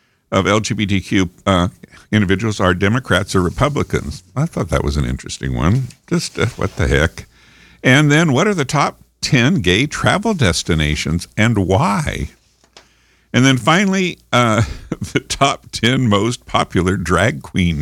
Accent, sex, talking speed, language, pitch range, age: American, male, 145 wpm, English, 85-130 Hz, 60-79